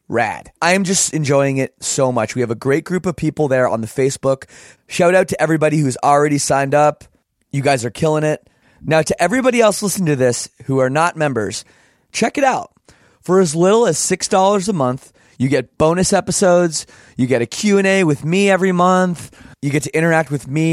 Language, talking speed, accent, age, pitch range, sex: English, 210 wpm, American, 20-39, 130-175 Hz, male